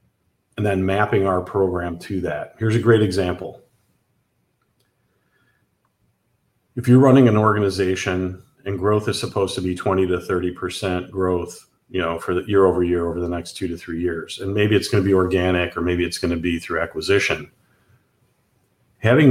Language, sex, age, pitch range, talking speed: English, male, 40-59, 90-110 Hz, 170 wpm